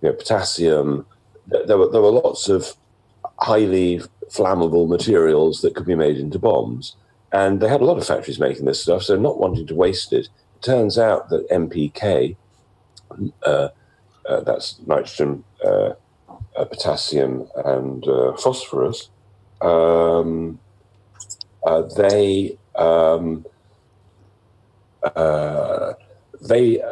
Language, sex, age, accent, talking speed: English, male, 50-69, British, 120 wpm